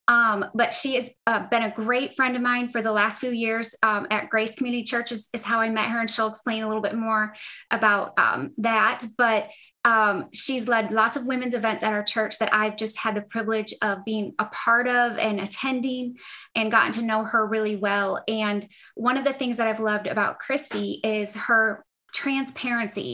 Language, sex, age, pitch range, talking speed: English, female, 20-39, 215-245 Hz, 210 wpm